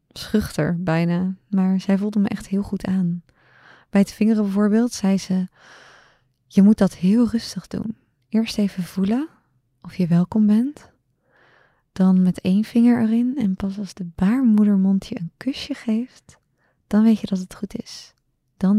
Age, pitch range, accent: 20-39, 180-210 Hz, Dutch